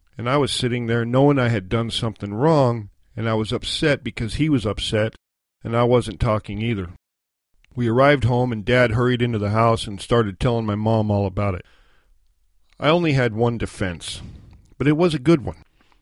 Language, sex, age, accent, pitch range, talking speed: English, male, 50-69, American, 100-125 Hz, 195 wpm